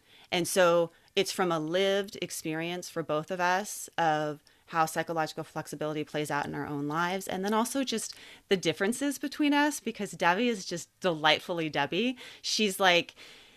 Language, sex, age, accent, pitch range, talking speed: English, female, 30-49, American, 160-240 Hz, 165 wpm